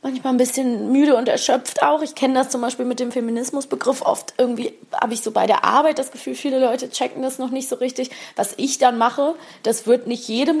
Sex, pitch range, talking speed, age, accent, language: female, 205-260 Hz, 230 wpm, 20-39, German, German